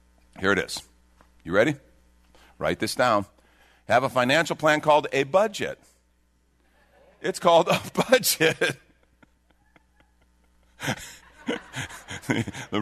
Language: English